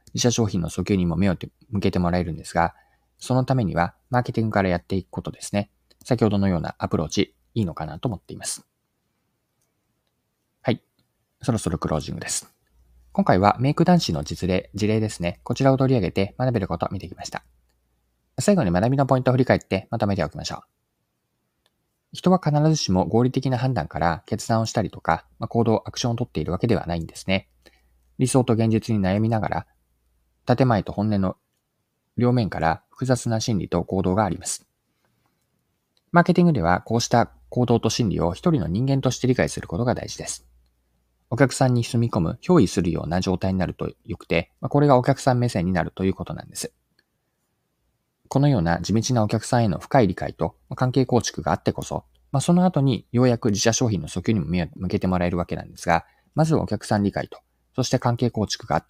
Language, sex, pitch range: Japanese, male, 85-125 Hz